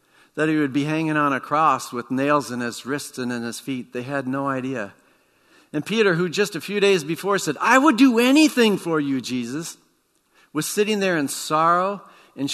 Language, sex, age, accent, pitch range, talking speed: English, male, 50-69, American, 125-160 Hz, 205 wpm